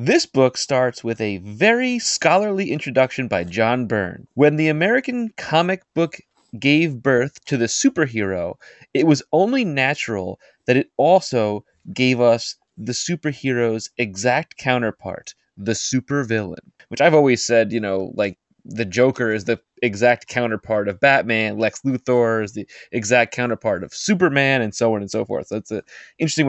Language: English